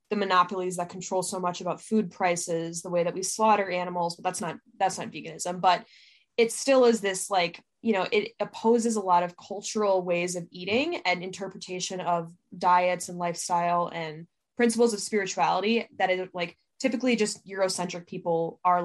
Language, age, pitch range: English, 10-29, 175-215 Hz